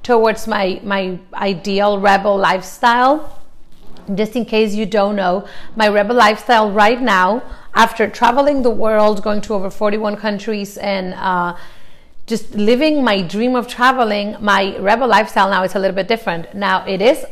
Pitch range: 200-235 Hz